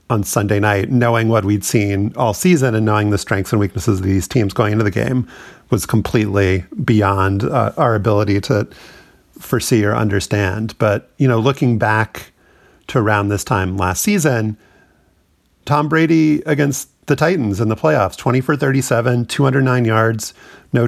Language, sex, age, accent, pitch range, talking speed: English, male, 40-59, American, 105-130 Hz, 165 wpm